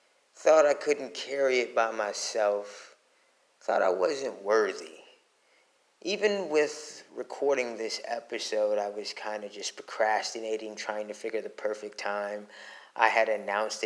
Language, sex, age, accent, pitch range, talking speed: English, male, 20-39, American, 110-160 Hz, 135 wpm